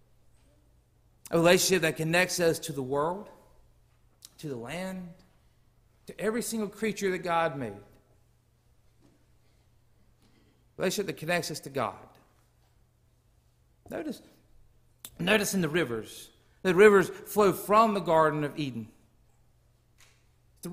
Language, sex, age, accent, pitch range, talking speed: English, male, 50-69, American, 140-195 Hz, 115 wpm